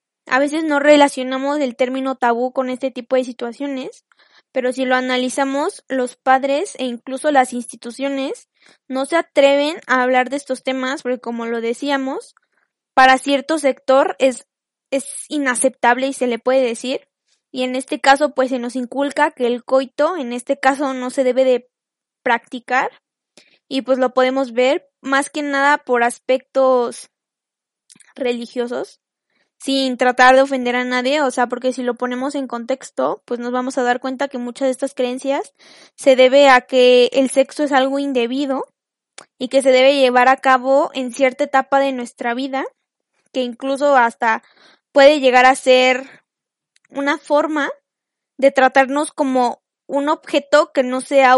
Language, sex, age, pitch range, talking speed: Spanish, female, 20-39, 255-280 Hz, 165 wpm